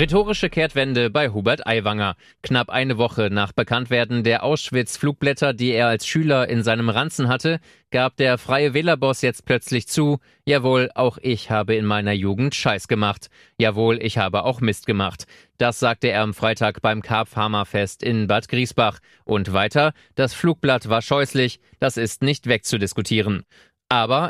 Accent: German